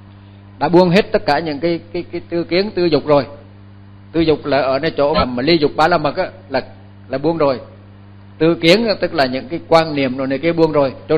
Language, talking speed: Vietnamese, 245 wpm